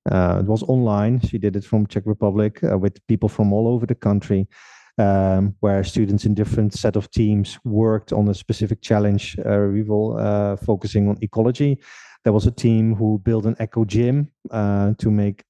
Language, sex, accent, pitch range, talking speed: English, male, Dutch, 105-120 Hz, 195 wpm